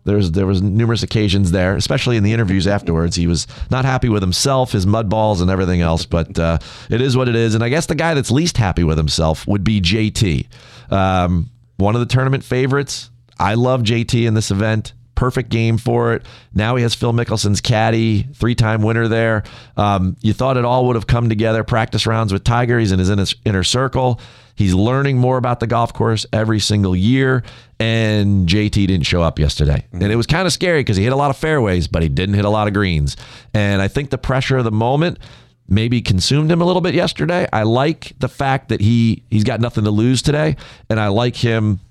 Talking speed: 225 wpm